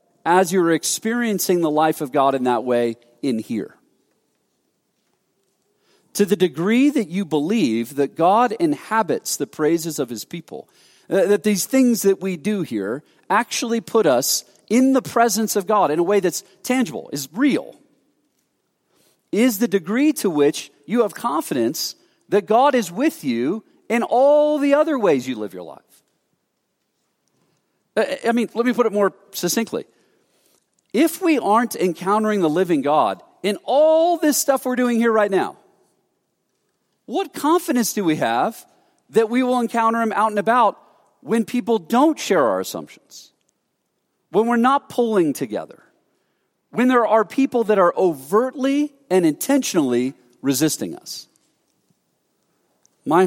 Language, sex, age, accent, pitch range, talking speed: English, male, 40-59, American, 155-250 Hz, 145 wpm